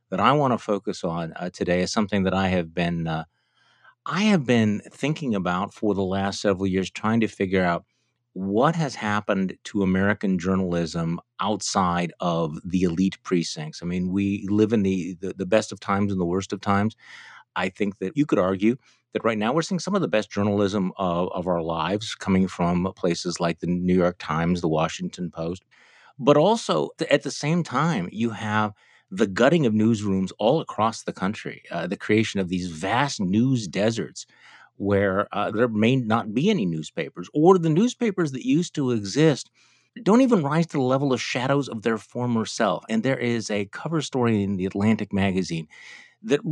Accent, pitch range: American, 95-125 Hz